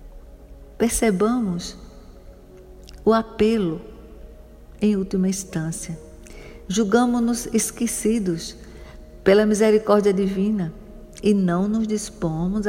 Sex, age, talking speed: female, 50-69, 70 wpm